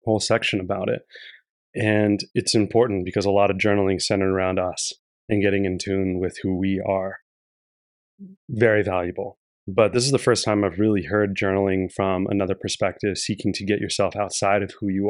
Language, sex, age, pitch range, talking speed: English, male, 30-49, 95-110 Hz, 185 wpm